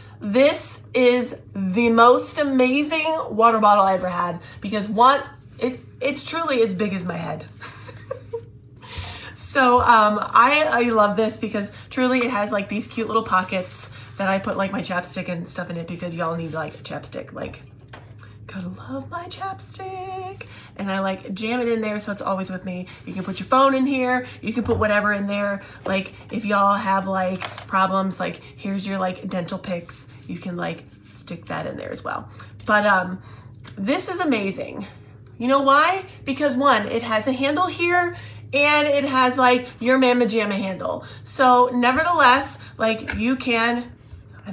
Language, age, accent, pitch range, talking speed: English, 30-49, American, 175-255 Hz, 175 wpm